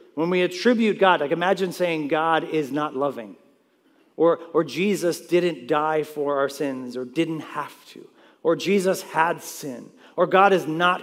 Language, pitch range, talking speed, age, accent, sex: English, 140-190 Hz, 170 wpm, 40-59, American, male